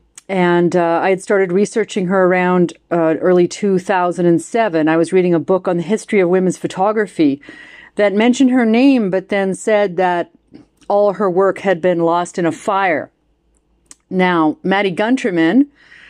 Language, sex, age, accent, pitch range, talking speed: English, female, 40-59, American, 170-205 Hz, 155 wpm